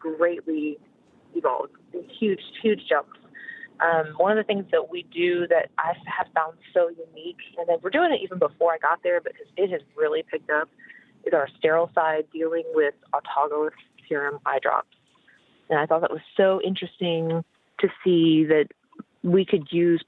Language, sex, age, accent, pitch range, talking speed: English, female, 30-49, American, 155-190 Hz, 175 wpm